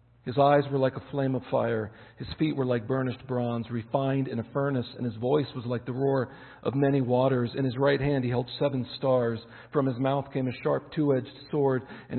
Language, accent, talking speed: English, American, 225 wpm